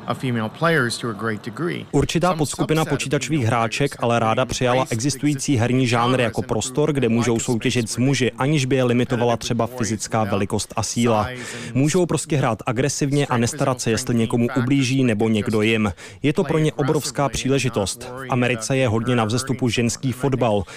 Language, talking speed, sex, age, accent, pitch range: Czech, 155 wpm, male, 30-49, native, 115-140 Hz